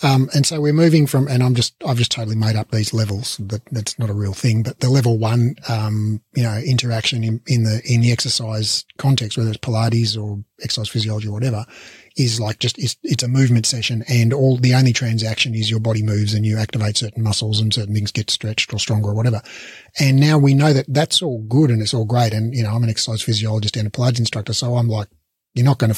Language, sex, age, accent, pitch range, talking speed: English, male, 30-49, Australian, 110-140 Hz, 245 wpm